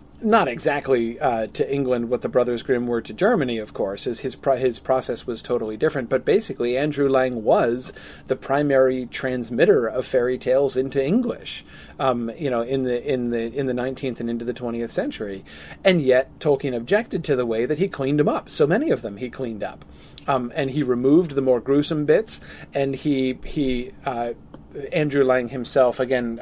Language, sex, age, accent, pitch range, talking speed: English, male, 40-59, American, 120-145 Hz, 195 wpm